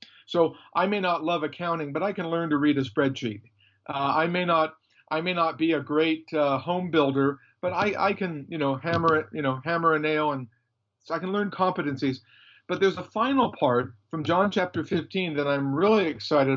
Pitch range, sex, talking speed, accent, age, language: 140-170 Hz, male, 215 wpm, American, 50-69, English